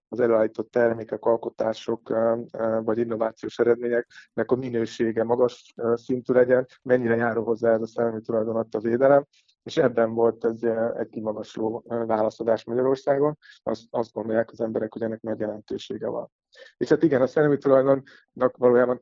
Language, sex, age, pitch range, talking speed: Hungarian, male, 30-49, 115-120 Hz, 140 wpm